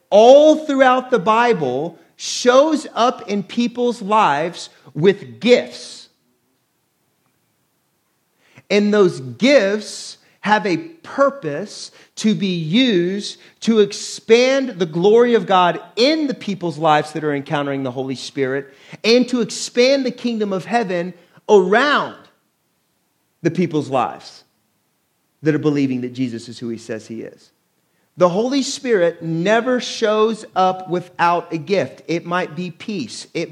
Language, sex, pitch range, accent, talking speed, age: English, male, 170-215 Hz, American, 130 wpm, 40-59